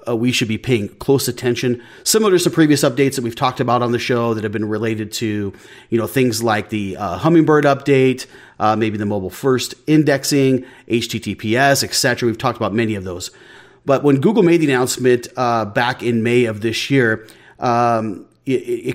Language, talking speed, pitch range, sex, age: English, 195 wpm, 110-135 Hz, male, 30-49